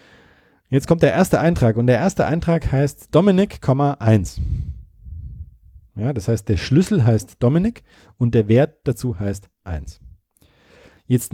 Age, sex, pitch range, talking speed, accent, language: 40-59, male, 105-145 Hz, 130 wpm, German, German